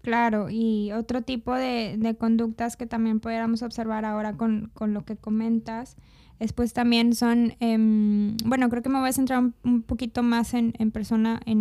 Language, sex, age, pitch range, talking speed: Spanish, female, 10-29, 215-235 Hz, 190 wpm